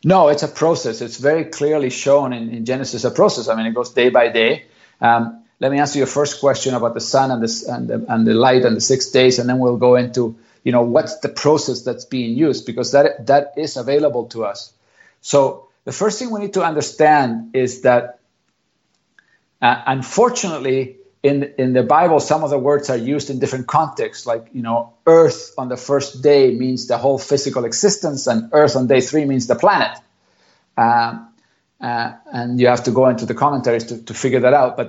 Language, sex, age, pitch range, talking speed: English, male, 50-69, 120-150 Hz, 210 wpm